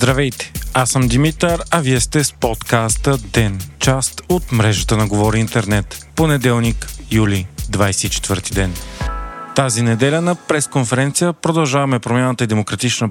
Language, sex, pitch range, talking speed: Bulgarian, male, 110-140 Hz, 130 wpm